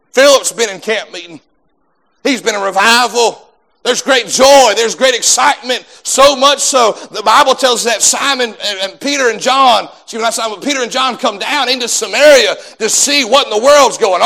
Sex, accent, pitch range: male, American, 205-275 Hz